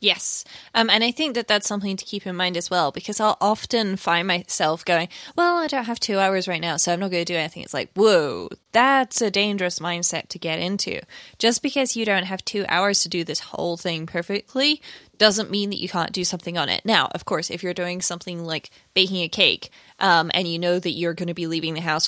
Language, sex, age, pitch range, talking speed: English, female, 10-29, 165-215 Hz, 245 wpm